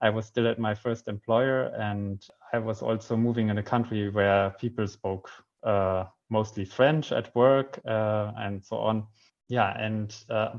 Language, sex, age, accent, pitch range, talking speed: English, male, 20-39, German, 105-120 Hz, 170 wpm